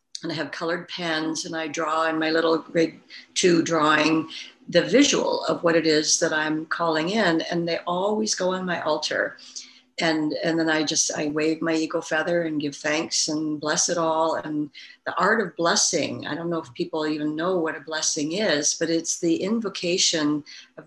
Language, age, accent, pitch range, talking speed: English, 60-79, American, 155-185 Hz, 200 wpm